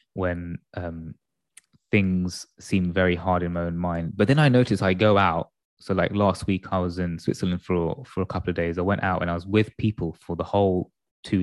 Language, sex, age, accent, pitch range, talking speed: English, male, 20-39, British, 85-105 Hz, 225 wpm